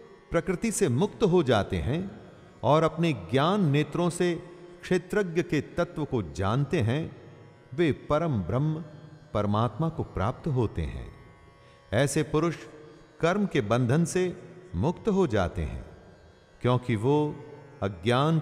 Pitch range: 105-175 Hz